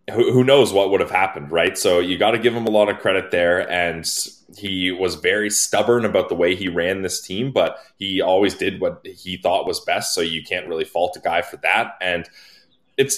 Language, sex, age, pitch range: English, male, 20-39, 80-105 Hz